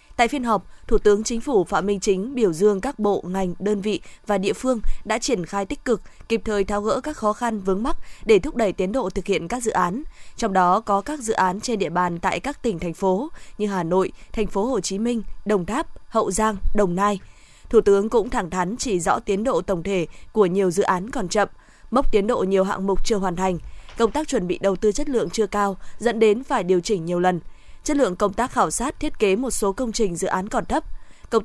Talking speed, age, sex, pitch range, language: 250 wpm, 20-39, female, 190-235 Hz, Vietnamese